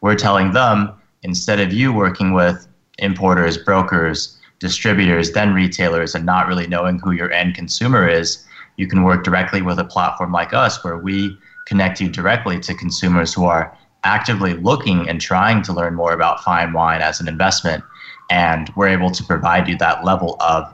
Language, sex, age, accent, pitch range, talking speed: English, male, 30-49, American, 85-100 Hz, 180 wpm